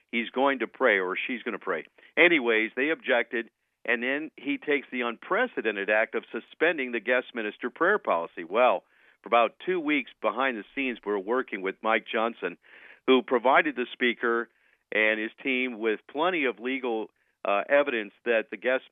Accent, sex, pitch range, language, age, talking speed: American, male, 110-130 Hz, English, 50-69, 175 wpm